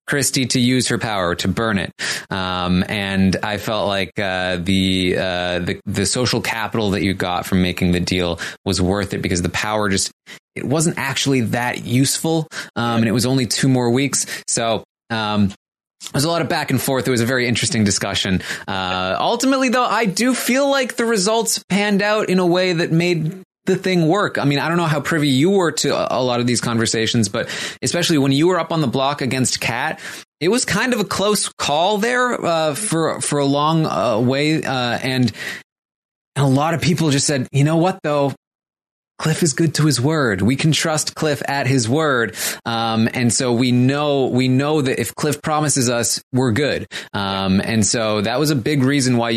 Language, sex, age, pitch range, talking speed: English, male, 20-39, 105-155 Hz, 205 wpm